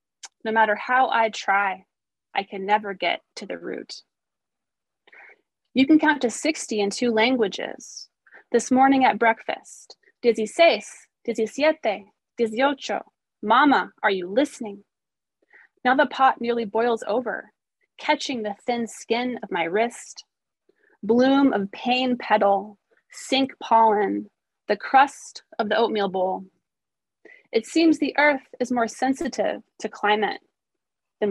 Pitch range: 210-275 Hz